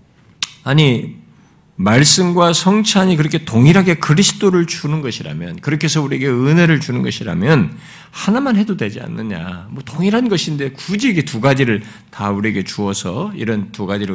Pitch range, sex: 120-185 Hz, male